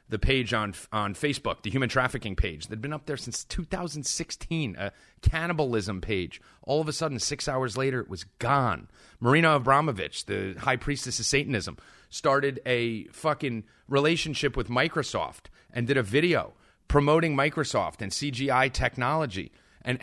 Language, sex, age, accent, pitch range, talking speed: English, male, 30-49, American, 120-155 Hz, 155 wpm